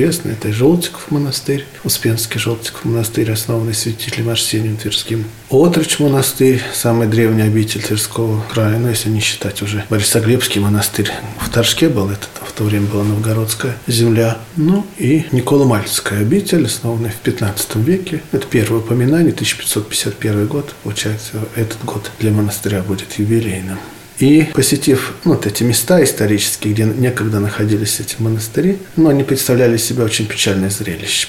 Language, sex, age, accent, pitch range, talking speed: Russian, male, 40-59, native, 105-135 Hz, 140 wpm